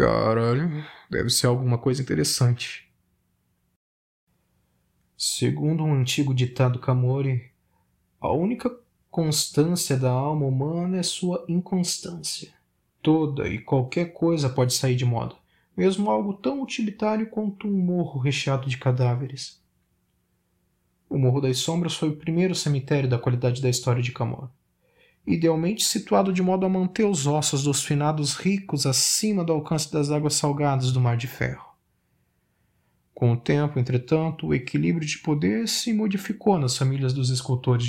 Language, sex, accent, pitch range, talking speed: Portuguese, male, Brazilian, 125-165 Hz, 140 wpm